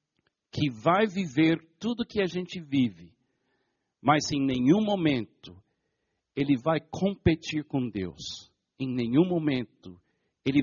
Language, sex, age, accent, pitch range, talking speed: Portuguese, male, 60-79, Brazilian, 115-160 Hz, 120 wpm